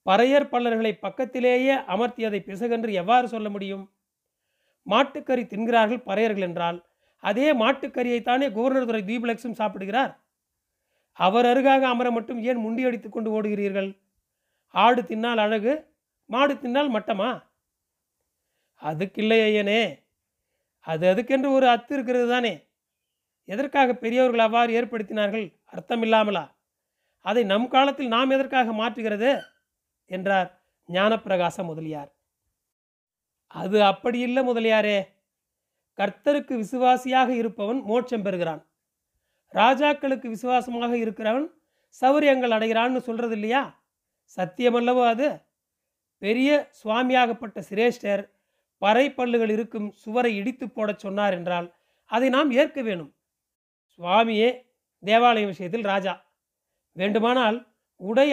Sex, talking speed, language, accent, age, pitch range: male, 95 wpm, Tamil, native, 40-59, 205-250 Hz